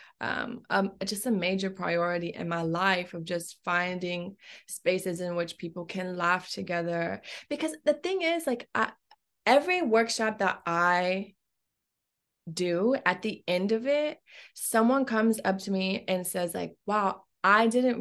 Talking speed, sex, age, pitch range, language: 150 wpm, female, 20-39, 185-245 Hz, English